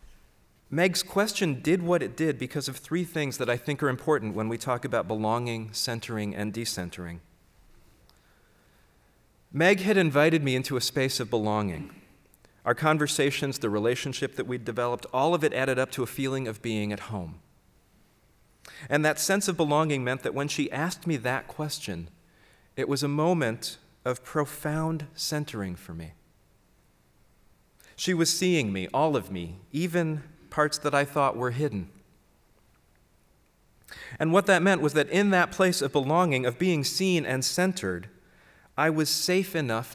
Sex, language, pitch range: male, English, 110-155 Hz